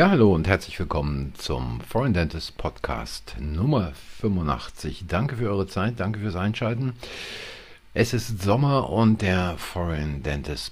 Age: 50-69